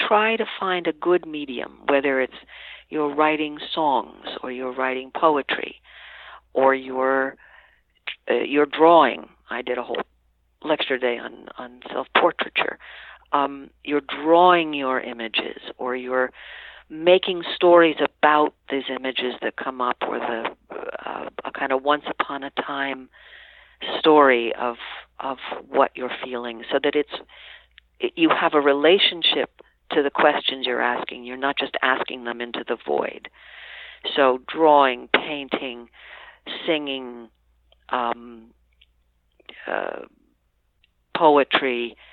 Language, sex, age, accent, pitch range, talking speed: English, female, 50-69, American, 125-155 Hz, 120 wpm